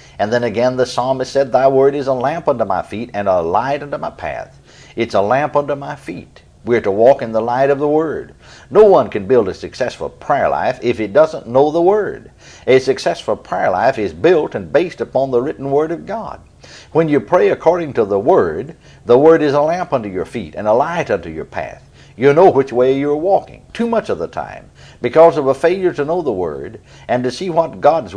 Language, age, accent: English, 60-79, American